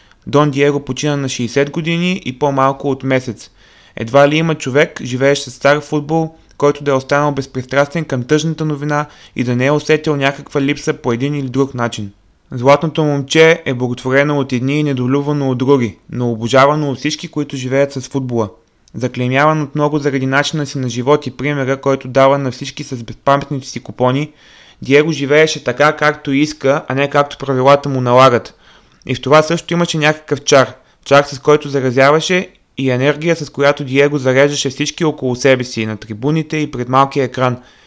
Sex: male